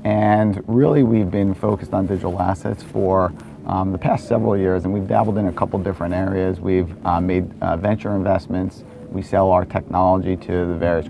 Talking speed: 190 wpm